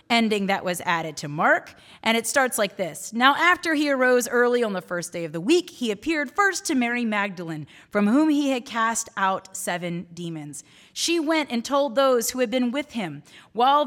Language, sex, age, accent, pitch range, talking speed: English, female, 30-49, American, 180-265 Hz, 210 wpm